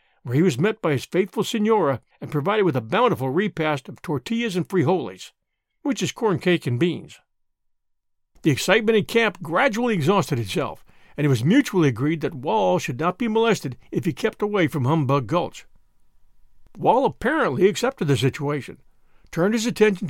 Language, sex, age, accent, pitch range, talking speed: English, male, 60-79, American, 145-205 Hz, 170 wpm